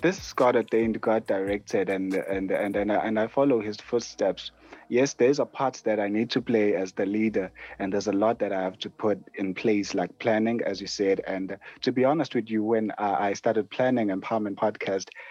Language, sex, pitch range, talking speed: English, male, 105-120 Hz, 220 wpm